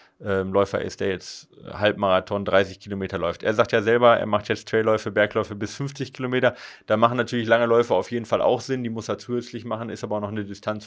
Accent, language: German, German